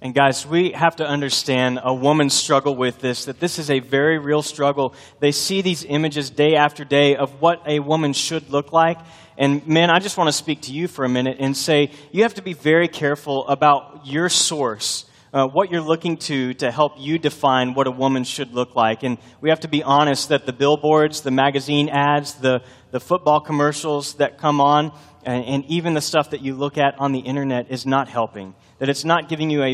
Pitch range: 130-155 Hz